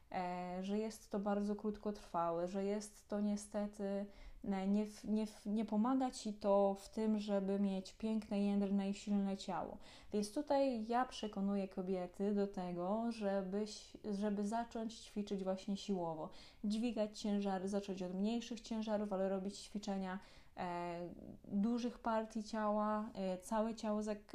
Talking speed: 140 wpm